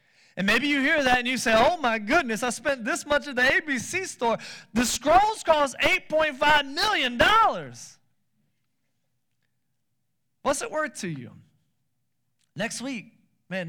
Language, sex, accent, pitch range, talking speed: English, male, American, 120-165 Hz, 140 wpm